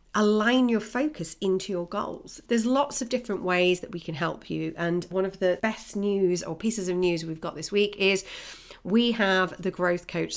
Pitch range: 170-210 Hz